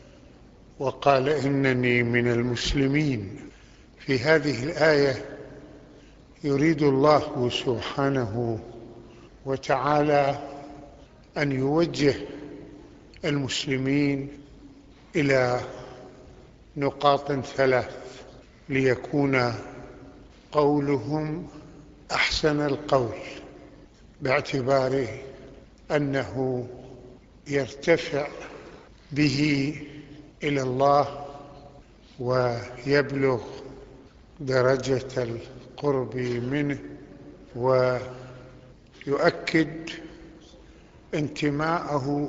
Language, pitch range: Arabic, 130-145 Hz